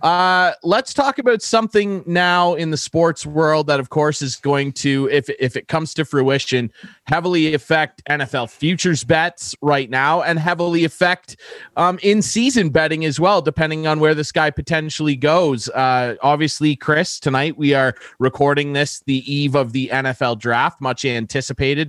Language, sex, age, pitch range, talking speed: English, male, 30-49, 130-170 Hz, 165 wpm